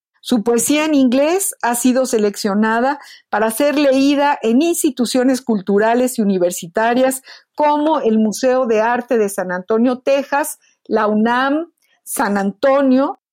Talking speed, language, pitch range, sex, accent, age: 125 wpm, Spanish, 215-280 Hz, female, Mexican, 50-69